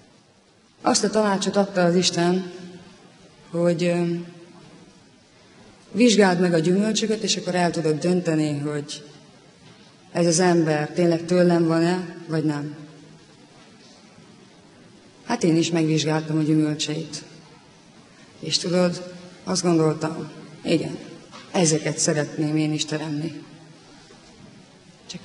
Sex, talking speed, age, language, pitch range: female, 100 wpm, 30-49, English, 155-190 Hz